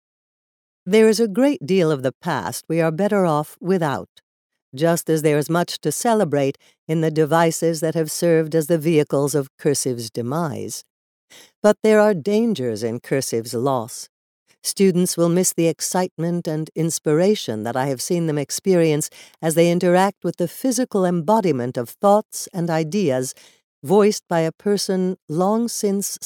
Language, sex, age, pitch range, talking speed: English, female, 60-79, 145-195 Hz, 160 wpm